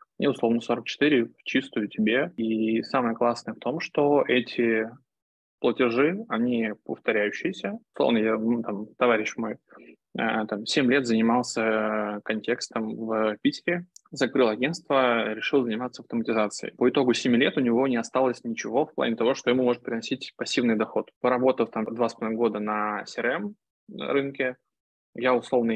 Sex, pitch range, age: male, 110-140 Hz, 20-39